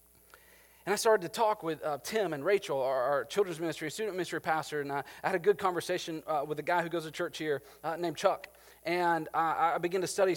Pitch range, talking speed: 120-205 Hz, 235 wpm